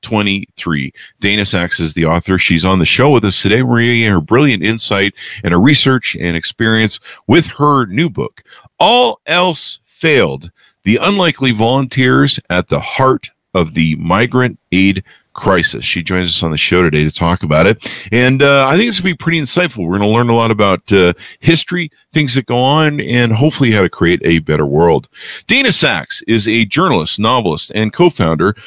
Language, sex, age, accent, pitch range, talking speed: English, male, 50-69, American, 95-145 Hz, 190 wpm